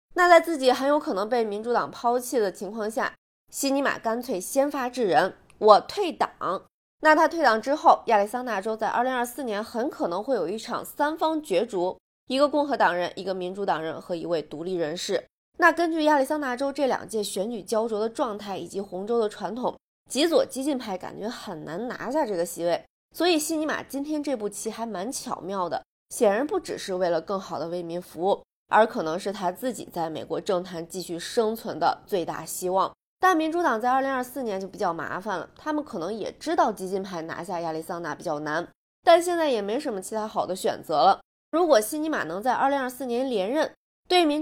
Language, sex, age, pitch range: Chinese, female, 20-39, 185-285 Hz